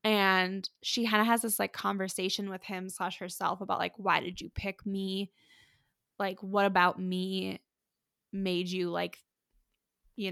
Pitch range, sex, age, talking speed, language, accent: 190-230 Hz, female, 10-29, 155 wpm, English, American